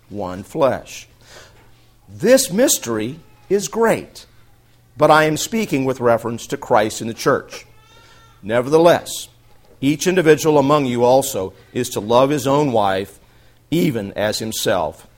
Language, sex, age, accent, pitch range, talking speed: English, male, 50-69, American, 110-135 Hz, 125 wpm